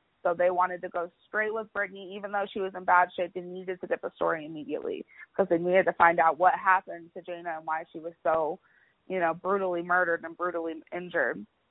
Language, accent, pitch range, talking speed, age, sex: English, American, 180-245 Hz, 225 wpm, 20-39, female